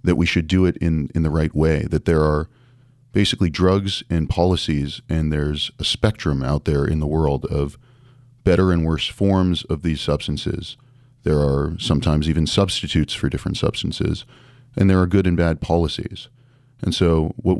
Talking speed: 175 wpm